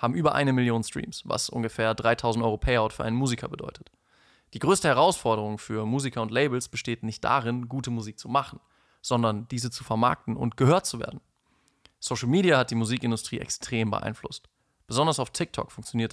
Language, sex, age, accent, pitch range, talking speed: German, male, 20-39, German, 115-135 Hz, 175 wpm